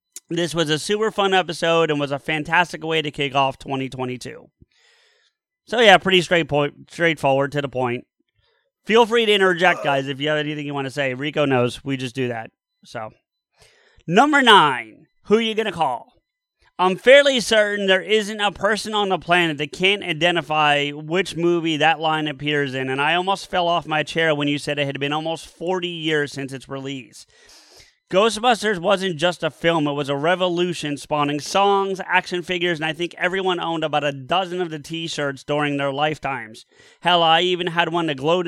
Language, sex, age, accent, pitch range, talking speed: English, male, 30-49, American, 145-185 Hz, 195 wpm